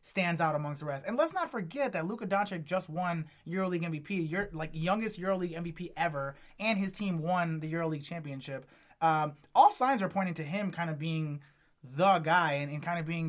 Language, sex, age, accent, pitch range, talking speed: English, male, 20-39, American, 160-195 Hz, 210 wpm